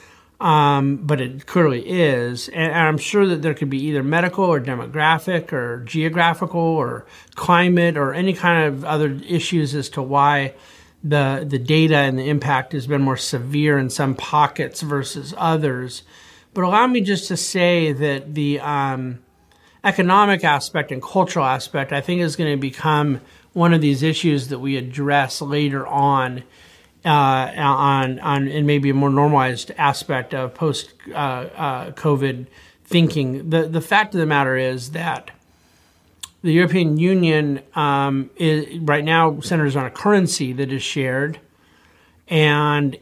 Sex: male